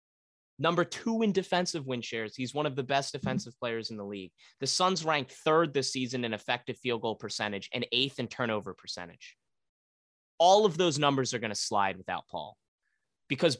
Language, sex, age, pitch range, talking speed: English, male, 20-39, 110-155 Hz, 190 wpm